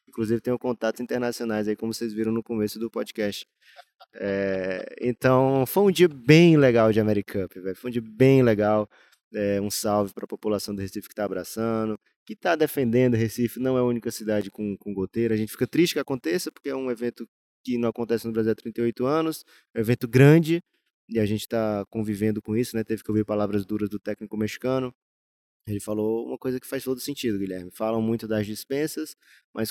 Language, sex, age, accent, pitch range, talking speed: Portuguese, male, 20-39, Brazilian, 105-120 Hz, 205 wpm